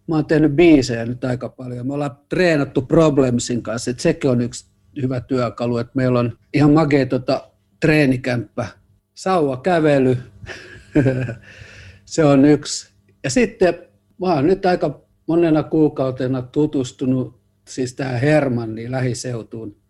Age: 50-69